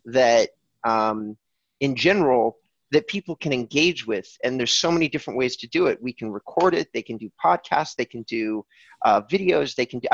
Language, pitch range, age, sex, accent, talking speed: English, 115-160 Hz, 30-49, male, American, 200 wpm